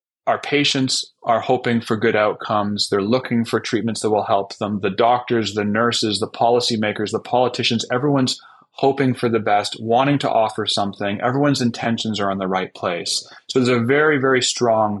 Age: 30-49